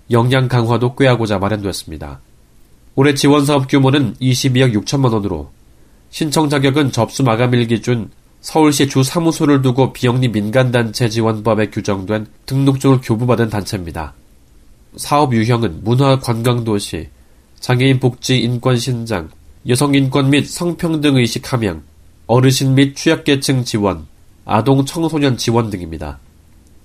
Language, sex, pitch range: Korean, male, 100-135 Hz